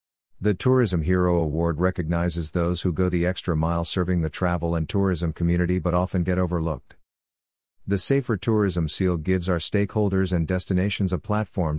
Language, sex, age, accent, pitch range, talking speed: English, male, 50-69, American, 85-100 Hz, 165 wpm